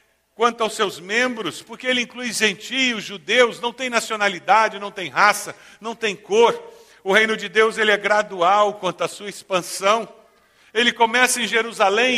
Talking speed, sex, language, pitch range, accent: 160 wpm, male, Portuguese, 185-240 Hz, Brazilian